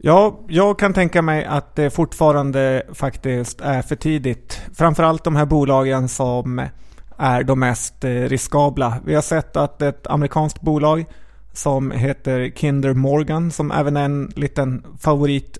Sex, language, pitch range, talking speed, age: male, Swedish, 130-155 Hz, 145 wpm, 30-49